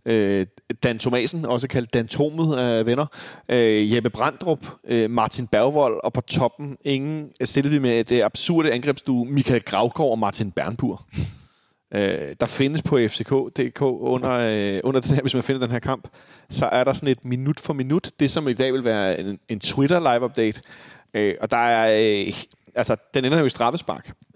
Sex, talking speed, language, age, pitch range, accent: male, 170 wpm, Danish, 30-49, 115-135 Hz, native